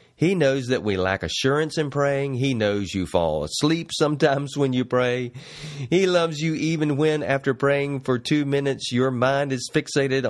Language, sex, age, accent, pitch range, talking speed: English, male, 40-59, American, 110-140 Hz, 180 wpm